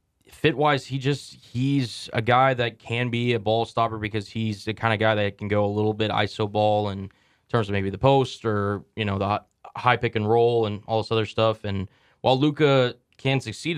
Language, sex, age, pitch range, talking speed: English, male, 20-39, 100-115 Hz, 220 wpm